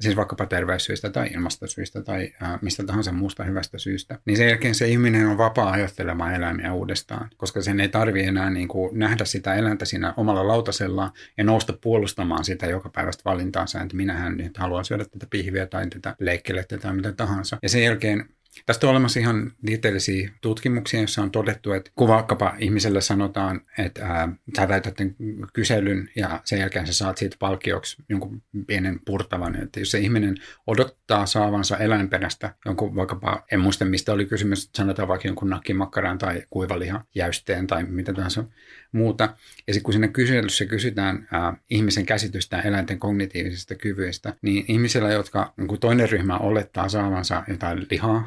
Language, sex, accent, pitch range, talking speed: Finnish, male, native, 95-110 Hz, 165 wpm